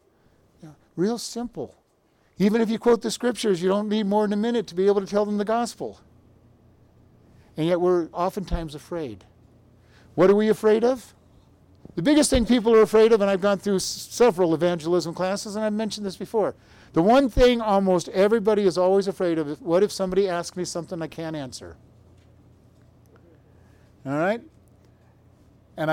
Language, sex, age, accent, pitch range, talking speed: English, male, 50-69, American, 115-195 Hz, 170 wpm